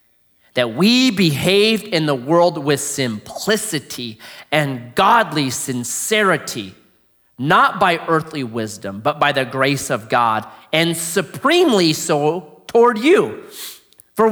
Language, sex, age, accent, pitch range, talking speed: English, male, 30-49, American, 130-200 Hz, 115 wpm